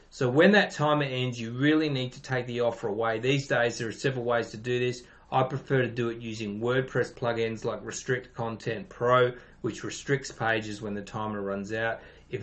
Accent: Australian